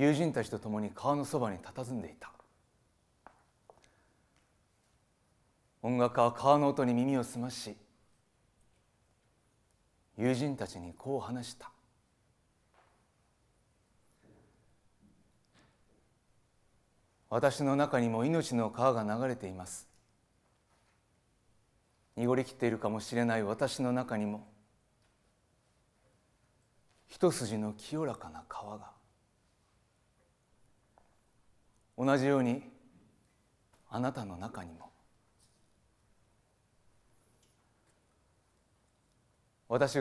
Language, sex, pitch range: Japanese, male, 110-130 Hz